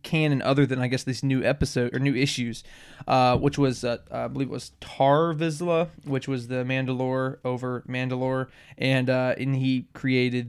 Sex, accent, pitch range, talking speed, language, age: male, American, 125-155 Hz, 185 wpm, English, 20-39